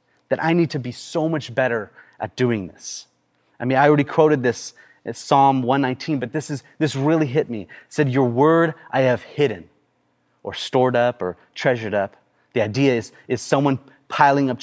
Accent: American